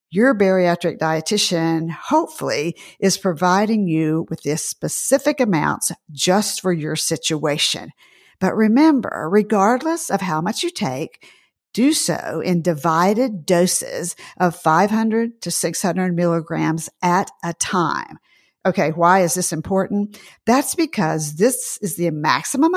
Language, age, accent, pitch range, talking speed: English, 50-69, American, 165-220 Hz, 125 wpm